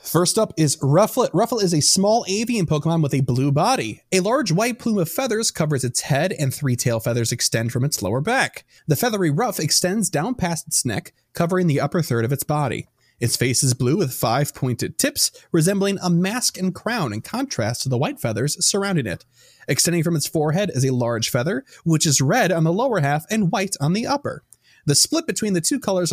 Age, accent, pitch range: 30-49, American, 135-185 Hz